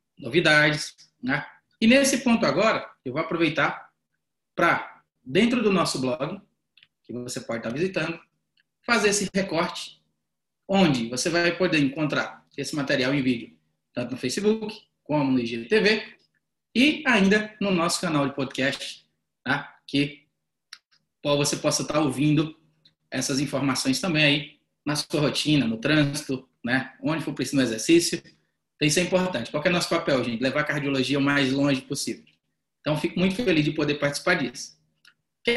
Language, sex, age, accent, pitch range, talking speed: Portuguese, male, 20-39, Brazilian, 130-185 Hz, 155 wpm